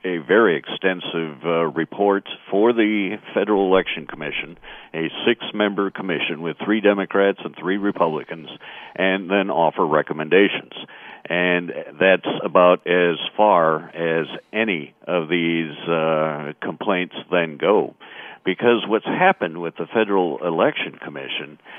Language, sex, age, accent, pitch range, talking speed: English, male, 60-79, American, 85-115 Hz, 120 wpm